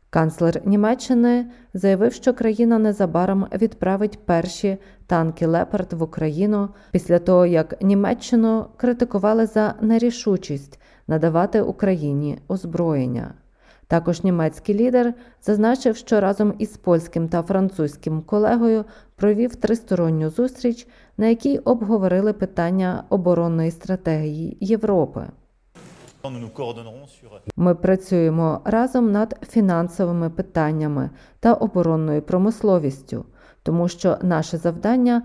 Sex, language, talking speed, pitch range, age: female, Ukrainian, 95 wpm, 165-220 Hz, 20-39